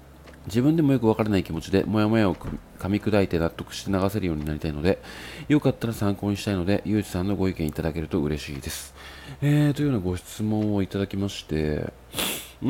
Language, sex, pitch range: Japanese, male, 80-120 Hz